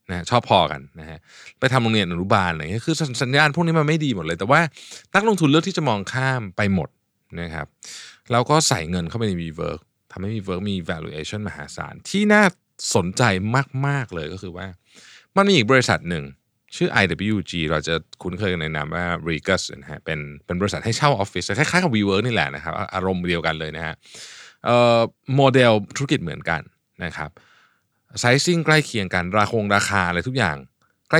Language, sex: Thai, male